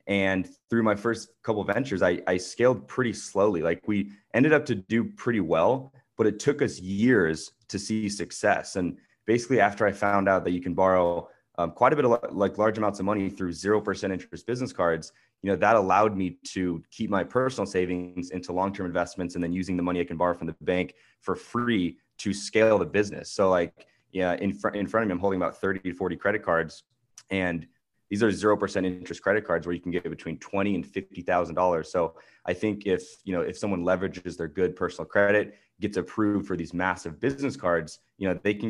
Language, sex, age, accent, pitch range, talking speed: English, male, 20-39, American, 90-105 Hz, 220 wpm